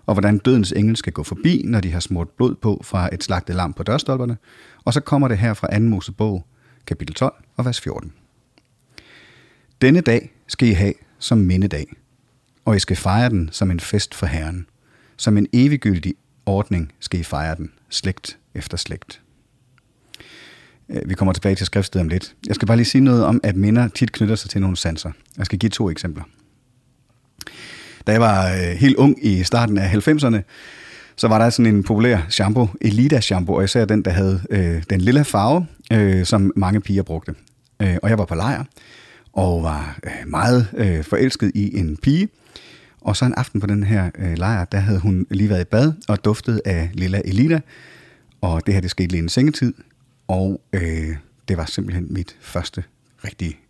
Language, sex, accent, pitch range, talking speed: English, male, Danish, 95-120 Hz, 180 wpm